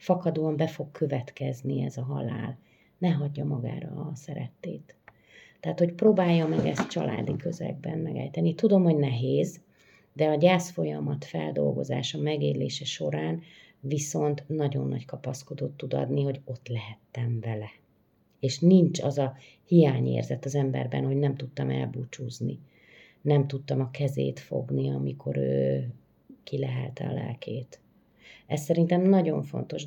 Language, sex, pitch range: Hungarian, female, 120-165 Hz